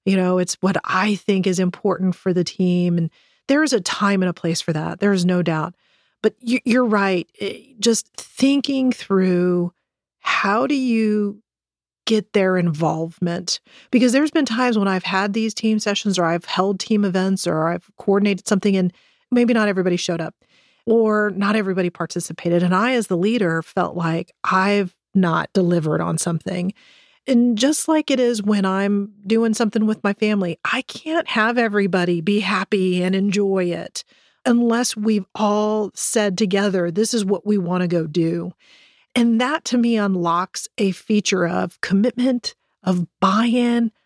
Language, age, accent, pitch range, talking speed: English, 40-59, American, 180-225 Hz, 170 wpm